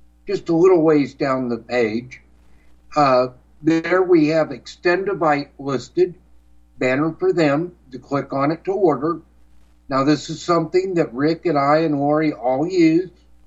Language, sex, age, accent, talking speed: English, male, 60-79, American, 155 wpm